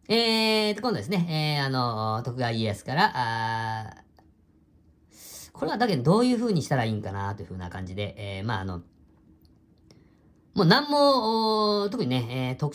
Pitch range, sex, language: 95-160 Hz, female, Japanese